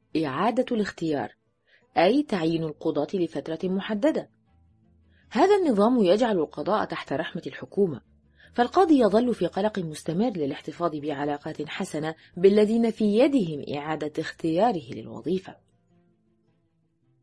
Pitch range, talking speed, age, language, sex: 140-215 Hz, 100 wpm, 20-39, Arabic, female